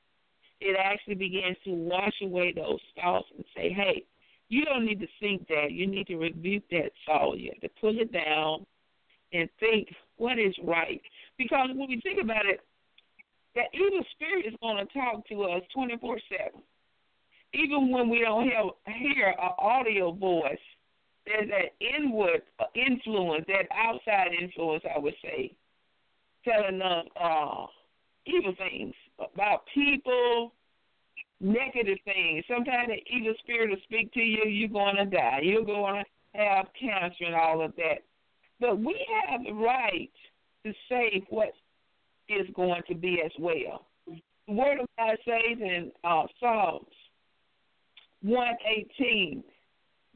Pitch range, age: 185-245 Hz, 50-69